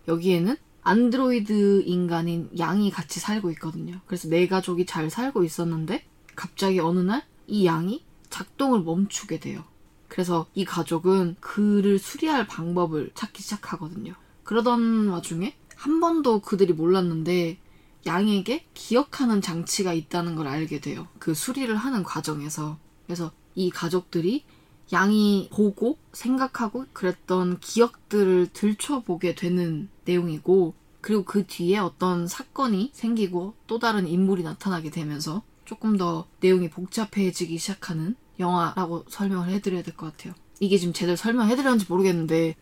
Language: Korean